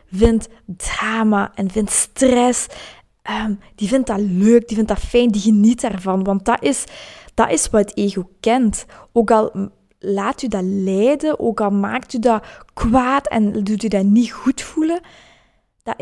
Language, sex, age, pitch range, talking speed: Dutch, female, 20-39, 200-245 Hz, 165 wpm